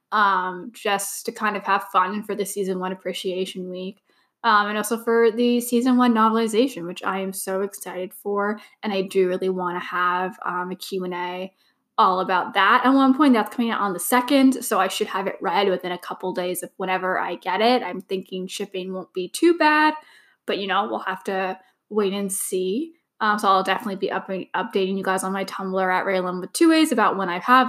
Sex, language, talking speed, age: female, English, 215 wpm, 10-29